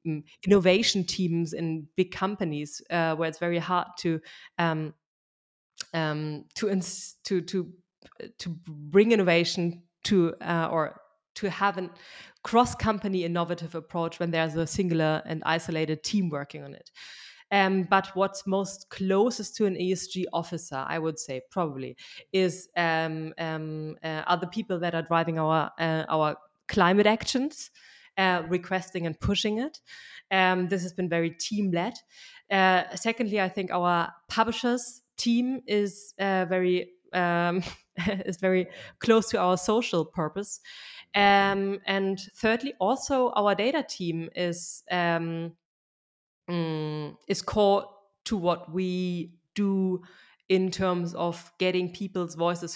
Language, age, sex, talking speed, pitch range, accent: English, 20-39, female, 135 wpm, 165-195 Hz, German